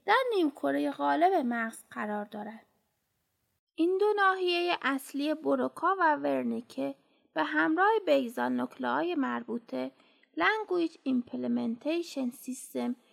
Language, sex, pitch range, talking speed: Persian, female, 235-330 Hz, 95 wpm